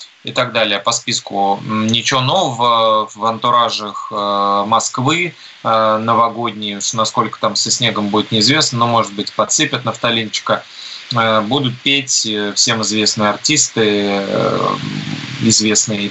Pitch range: 110-135 Hz